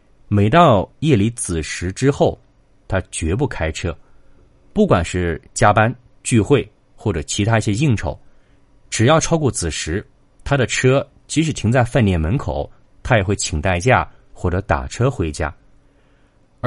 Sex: male